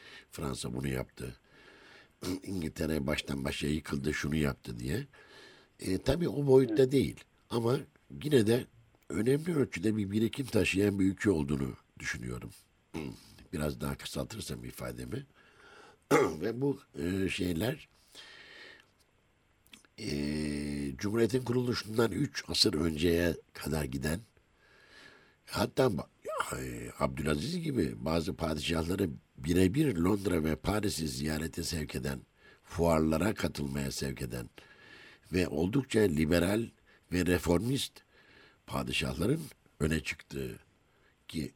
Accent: native